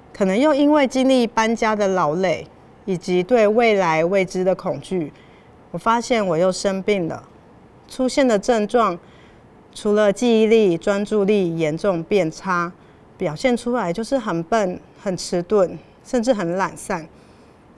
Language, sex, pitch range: Chinese, female, 180-225 Hz